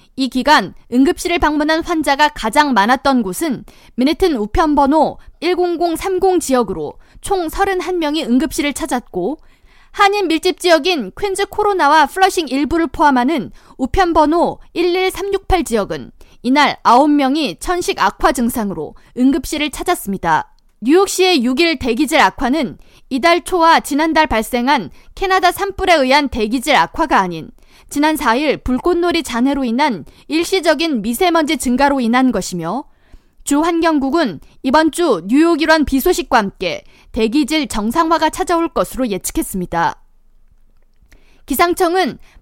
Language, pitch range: Korean, 250-340 Hz